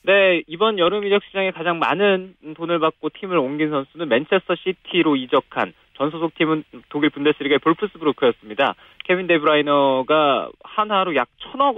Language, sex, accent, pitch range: Korean, male, native, 140-185 Hz